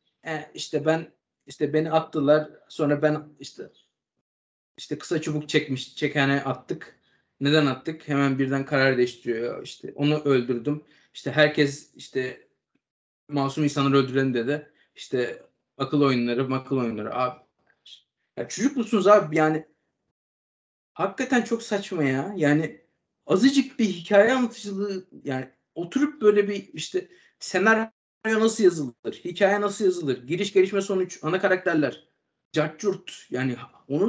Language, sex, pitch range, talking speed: Turkish, male, 140-200 Hz, 125 wpm